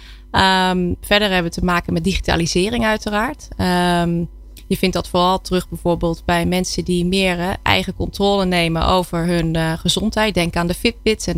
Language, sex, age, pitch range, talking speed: Dutch, female, 20-39, 170-195 Hz, 175 wpm